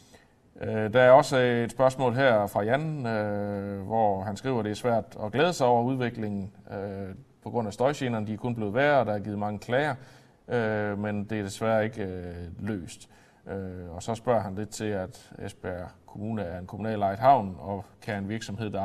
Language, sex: Danish, male